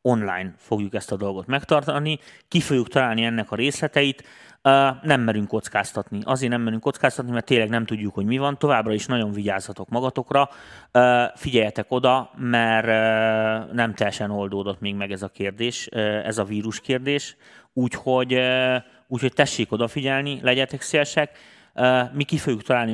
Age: 30-49